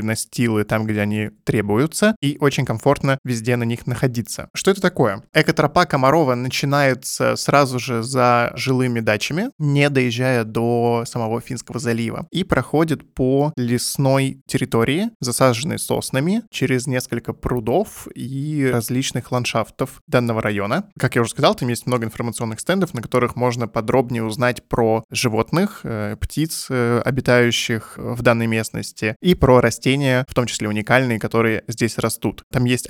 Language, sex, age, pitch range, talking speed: Russian, male, 20-39, 115-140 Hz, 140 wpm